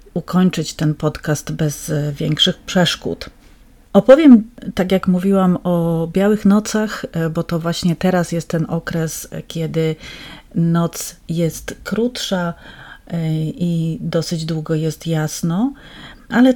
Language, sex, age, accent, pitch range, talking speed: Polish, female, 40-59, native, 165-190 Hz, 110 wpm